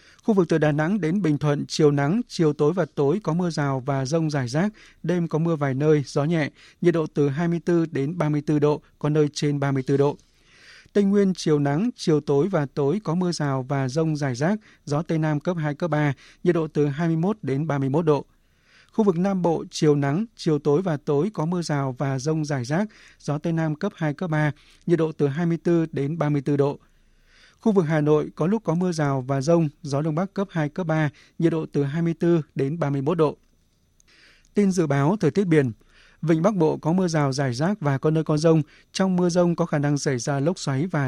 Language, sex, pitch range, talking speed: Vietnamese, male, 145-175 Hz, 225 wpm